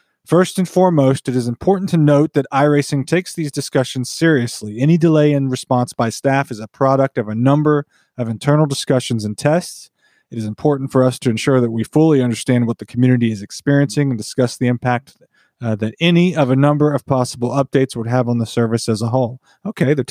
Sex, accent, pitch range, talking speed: male, American, 125-150 Hz, 210 wpm